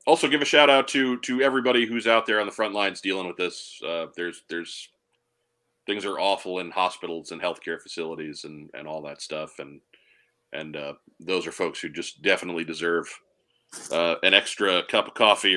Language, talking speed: English, 195 wpm